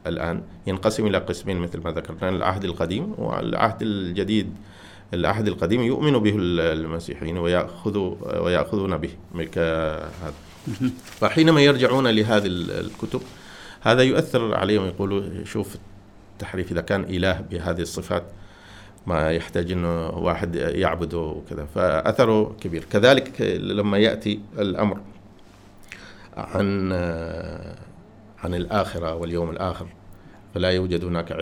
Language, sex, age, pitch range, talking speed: Arabic, male, 50-69, 85-105 Hz, 105 wpm